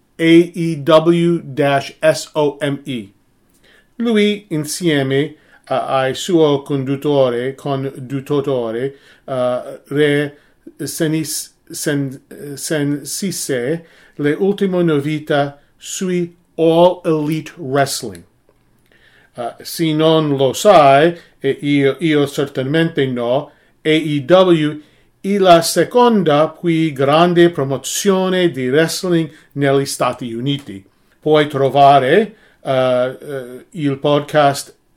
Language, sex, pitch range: English, male, 135-175 Hz